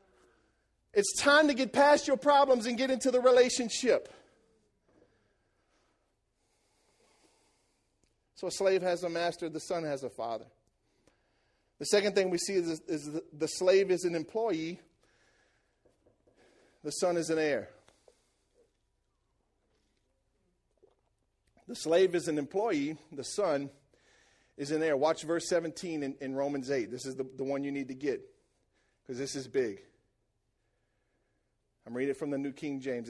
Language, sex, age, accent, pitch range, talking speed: English, male, 40-59, American, 120-185 Hz, 140 wpm